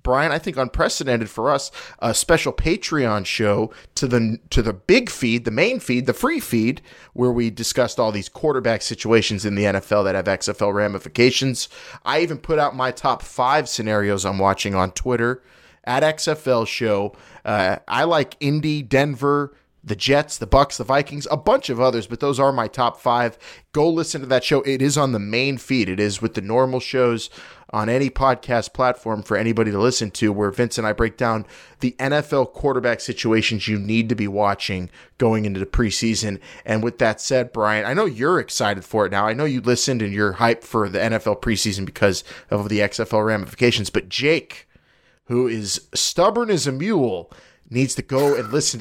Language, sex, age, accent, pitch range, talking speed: English, male, 30-49, American, 110-135 Hz, 195 wpm